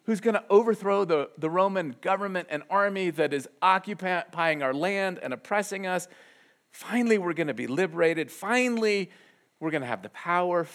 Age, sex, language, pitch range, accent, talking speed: 40-59, male, English, 145-190 Hz, American, 175 wpm